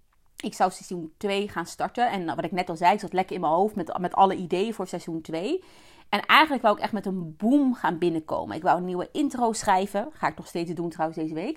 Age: 30-49